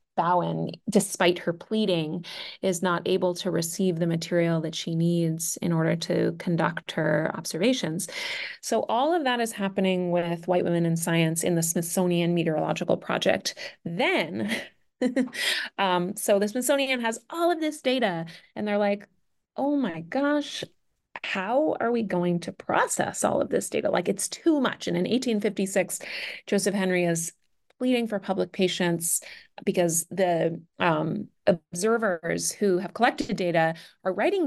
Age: 30-49